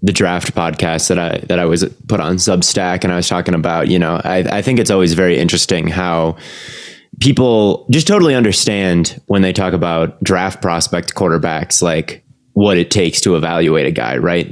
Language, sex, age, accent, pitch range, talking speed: English, male, 20-39, American, 85-100 Hz, 190 wpm